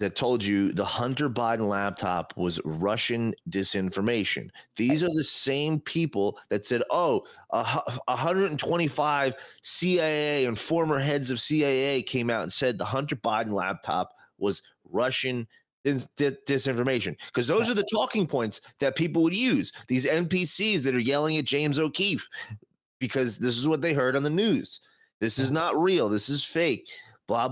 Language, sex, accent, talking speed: English, male, American, 155 wpm